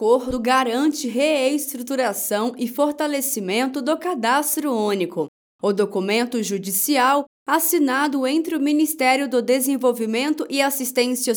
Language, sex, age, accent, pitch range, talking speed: Portuguese, female, 20-39, Brazilian, 230-295 Hz, 105 wpm